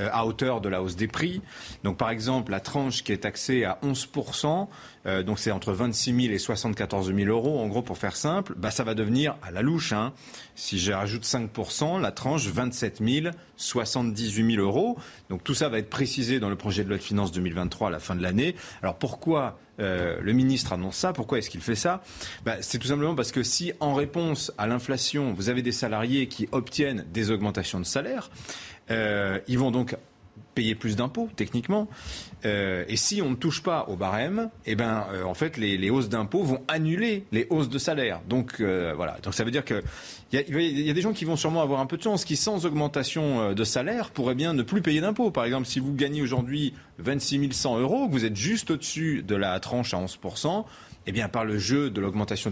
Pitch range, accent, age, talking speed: 105-140 Hz, French, 30-49, 220 wpm